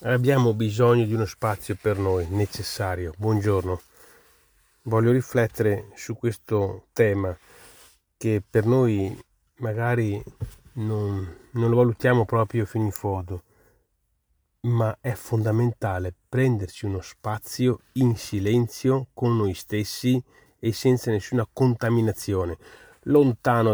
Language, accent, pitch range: Italian, native, 105-125 Hz